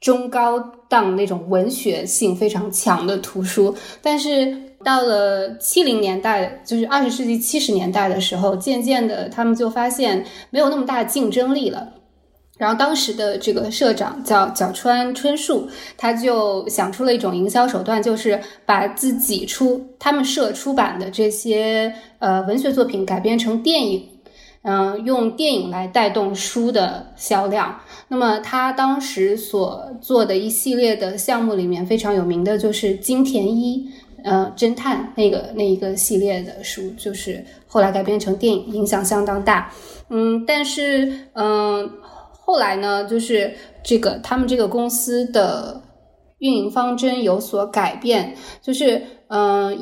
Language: Chinese